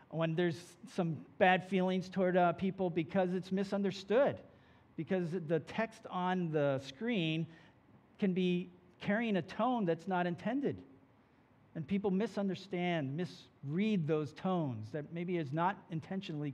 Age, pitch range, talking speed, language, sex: 50-69, 135-185 Hz, 130 wpm, English, male